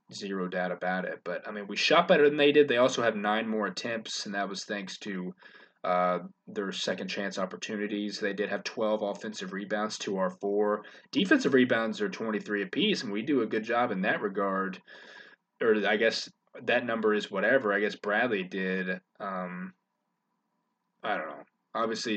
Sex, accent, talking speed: male, American, 185 wpm